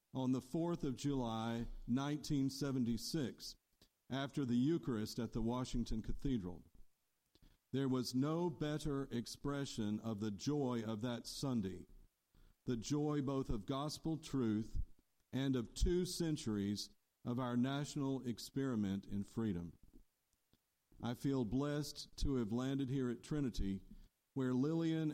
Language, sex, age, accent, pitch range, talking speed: English, male, 50-69, American, 115-145 Hz, 120 wpm